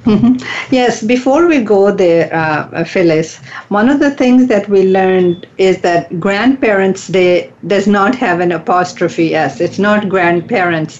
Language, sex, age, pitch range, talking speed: English, female, 50-69, 175-205 Hz, 155 wpm